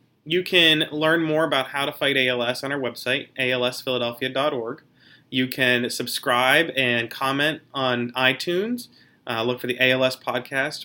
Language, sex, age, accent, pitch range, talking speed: English, male, 30-49, American, 120-135 Hz, 145 wpm